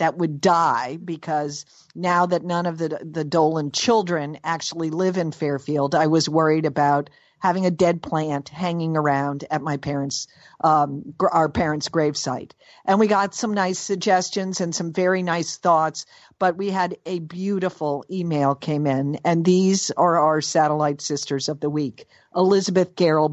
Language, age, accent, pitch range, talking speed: English, 50-69, American, 150-180 Hz, 160 wpm